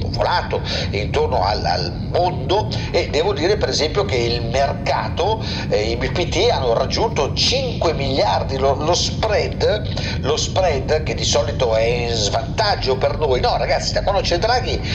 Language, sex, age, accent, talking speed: Italian, male, 50-69, native, 155 wpm